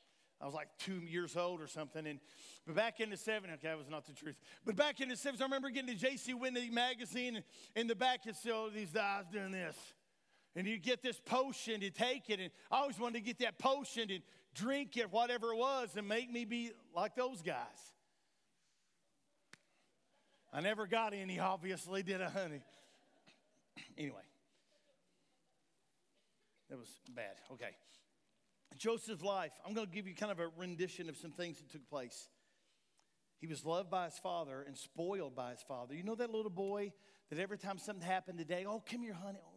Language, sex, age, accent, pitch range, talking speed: English, male, 50-69, American, 170-210 Hz, 195 wpm